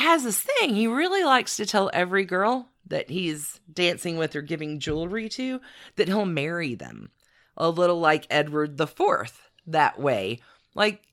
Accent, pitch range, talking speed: American, 130-200 Hz, 165 wpm